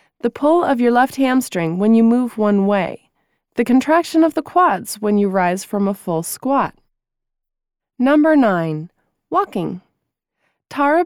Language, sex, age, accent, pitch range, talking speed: English, female, 20-39, American, 200-275 Hz, 145 wpm